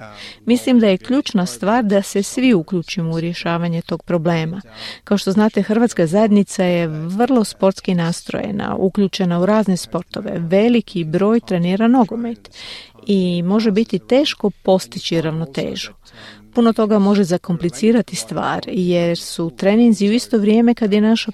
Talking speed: 140 wpm